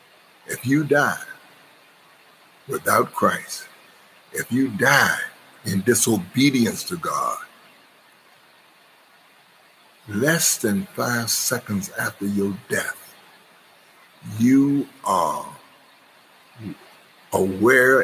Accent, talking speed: American, 75 wpm